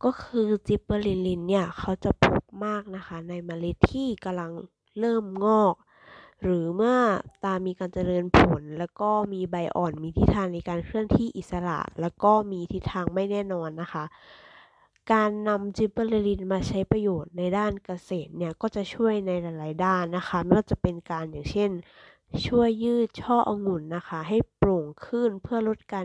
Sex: female